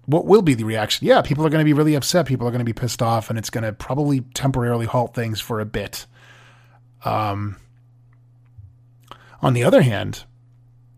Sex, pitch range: male, 115-135 Hz